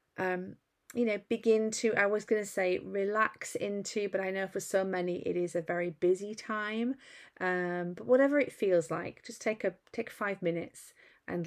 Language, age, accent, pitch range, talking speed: English, 30-49, British, 180-220 Hz, 195 wpm